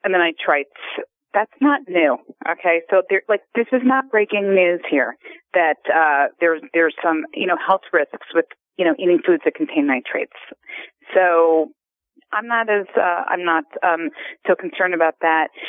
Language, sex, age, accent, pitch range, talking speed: English, female, 30-49, American, 165-210 Hz, 170 wpm